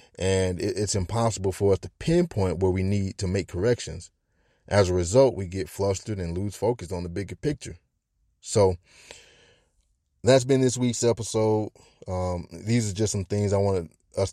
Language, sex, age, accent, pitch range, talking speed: English, male, 30-49, American, 85-105 Hz, 170 wpm